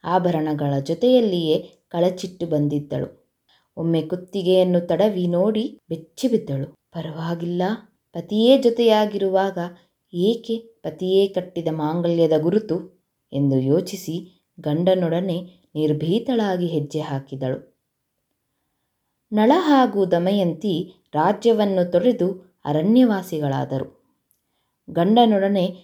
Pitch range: 165-210 Hz